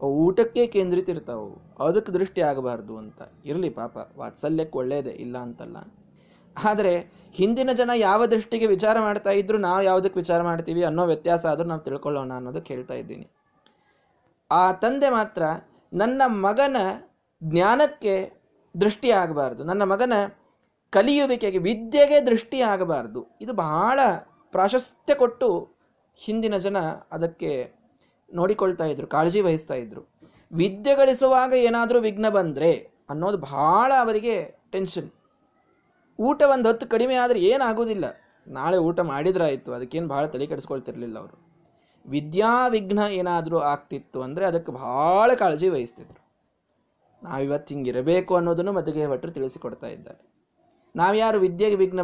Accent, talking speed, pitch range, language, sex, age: native, 115 wpm, 160-220 Hz, Kannada, male, 20-39